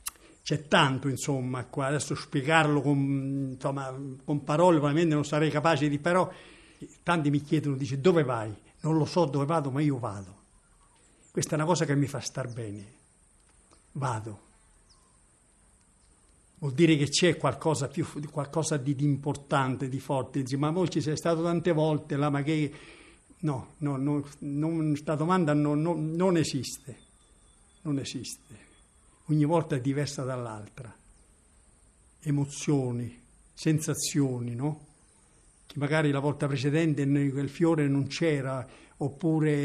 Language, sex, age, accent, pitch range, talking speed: Italian, male, 60-79, native, 135-155 Hz, 140 wpm